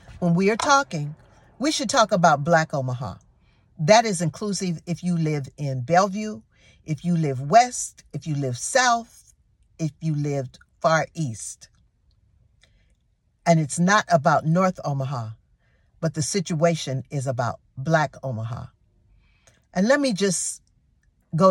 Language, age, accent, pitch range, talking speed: English, 50-69, American, 115-175 Hz, 135 wpm